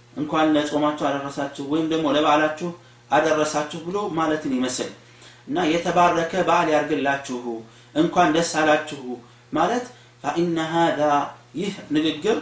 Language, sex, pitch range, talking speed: Amharic, male, 150-185 Hz, 120 wpm